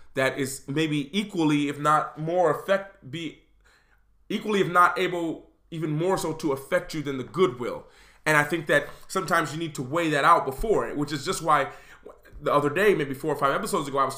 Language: English